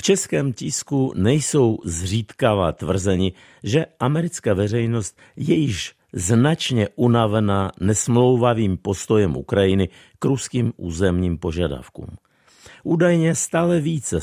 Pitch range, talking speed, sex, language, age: 95-135 Hz, 95 wpm, male, Czech, 50-69